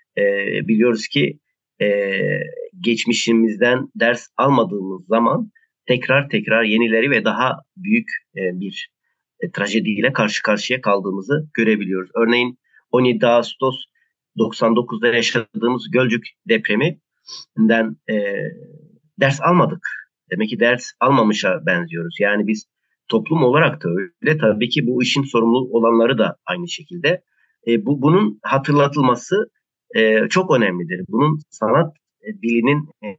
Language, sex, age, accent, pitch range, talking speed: Turkish, male, 40-59, native, 115-160 Hz, 110 wpm